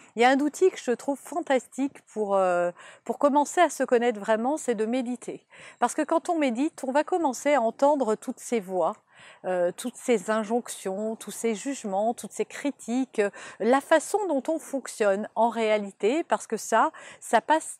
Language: French